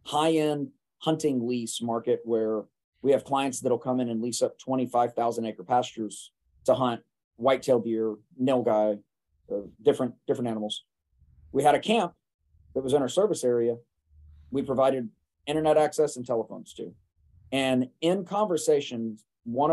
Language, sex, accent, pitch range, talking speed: English, male, American, 110-145 Hz, 145 wpm